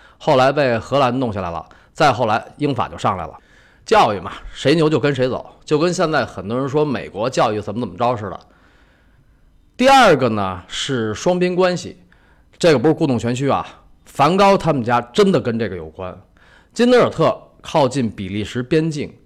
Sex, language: male, Chinese